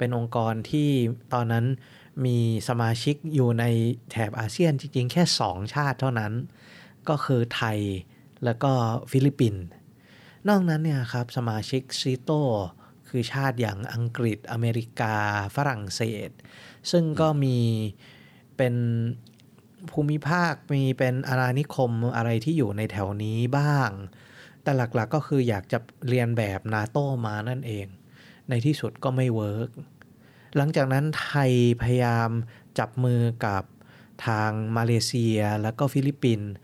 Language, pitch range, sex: Thai, 115-140 Hz, male